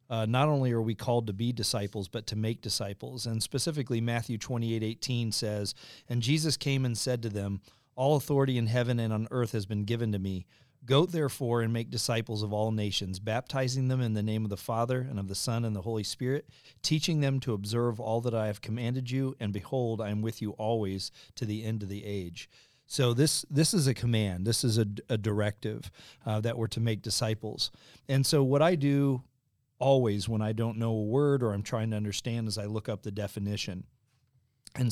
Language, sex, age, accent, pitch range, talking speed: English, male, 40-59, American, 110-125 Hz, 215 wpm